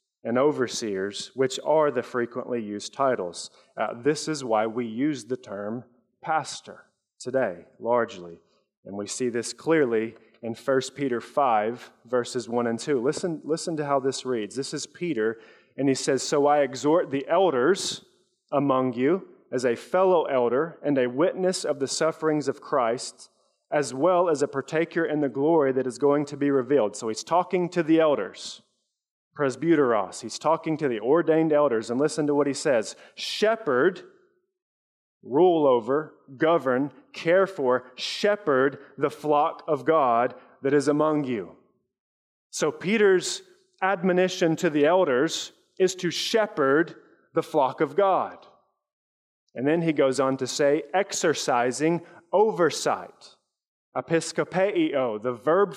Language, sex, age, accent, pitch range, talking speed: English, male, 30-49, American, 125-165 Hz, 145 wpm